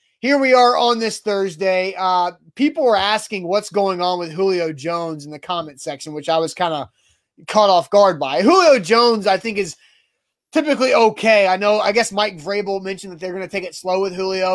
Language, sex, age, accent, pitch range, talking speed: English, male, 20-39, American, 170-215 Hz, 215 wpm